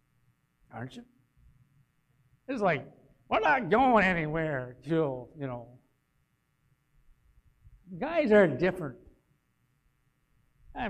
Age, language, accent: 60-79, English, American